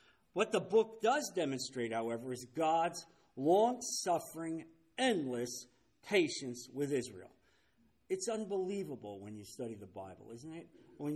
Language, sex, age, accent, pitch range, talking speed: English, male, 50-69, American, 140-220 Hz, 125 wpm